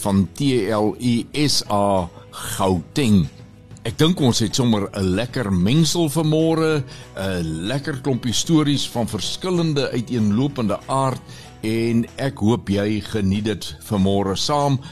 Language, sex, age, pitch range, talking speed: Swedish, male, 60-79, 95-125 Hz, 115 wpm